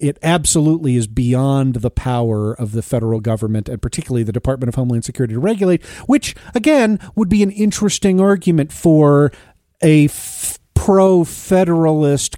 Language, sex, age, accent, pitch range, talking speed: English, male, 40-59, American, 115-160 Hz, 145 wpm